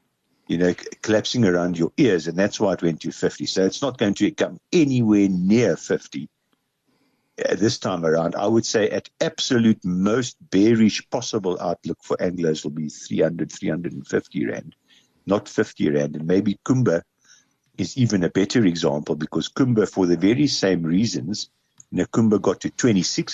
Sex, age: male, 60-79